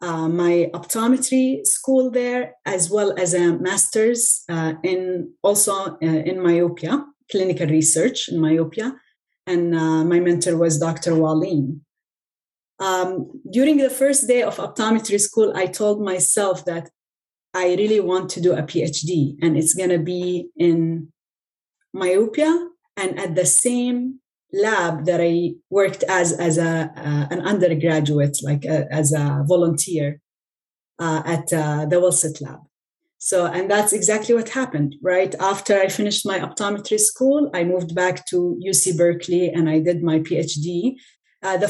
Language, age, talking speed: English, 30-49, 150 wpm